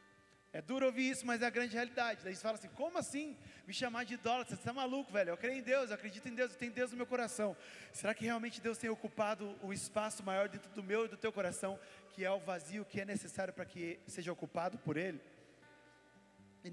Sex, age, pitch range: male, 20-39, 160-240 Hz